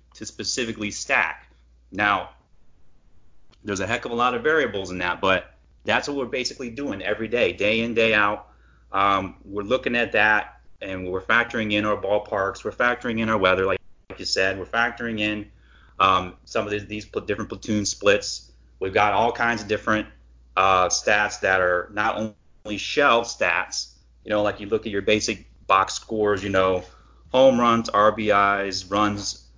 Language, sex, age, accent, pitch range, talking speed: English, male, 30-49, American, 90-110 Hz, 175 wpm